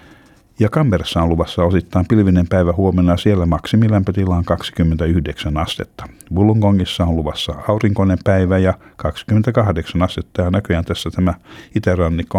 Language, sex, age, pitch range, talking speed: Finnish, male, 50-69, 85-105 Hz, 130 wpm